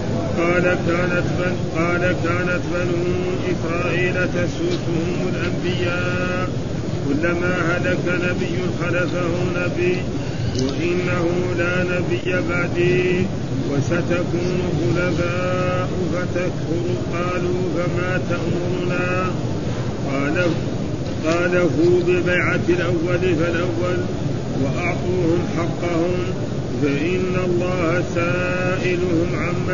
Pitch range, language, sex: 155-180 Hz, Arabic, male